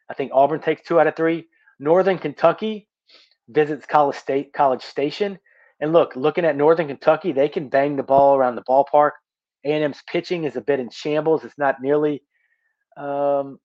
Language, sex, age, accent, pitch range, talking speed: English, male, 30-49, American, 135-165 Hz, 175 wpm